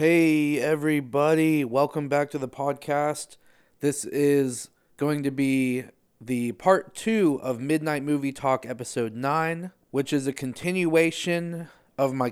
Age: 30-49